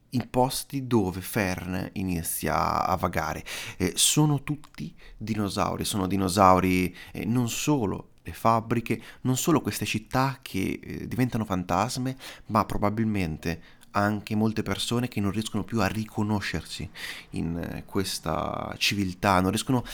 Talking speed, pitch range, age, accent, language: 125 wpm, 100-125 Hz, 30-49, native, Italian